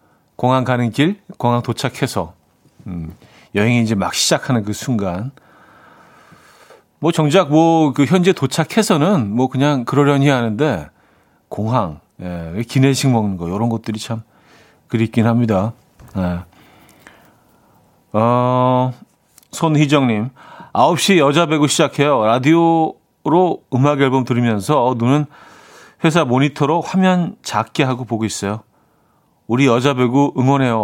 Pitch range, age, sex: 110-150 Hz, 40-59, male